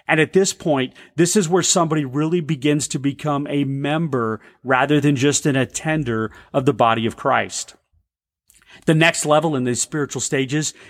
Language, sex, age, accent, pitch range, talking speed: English, male, 40-59, American, 130-170 Hz, 170 wpm